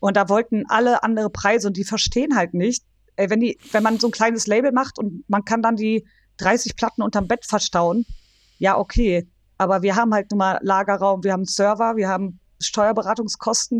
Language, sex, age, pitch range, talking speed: German, female, 30-49, 190-230 Hz, 200 wpm